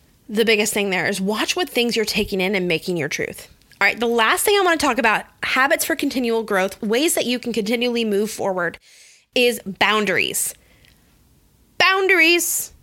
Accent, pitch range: American, 210-285 Hz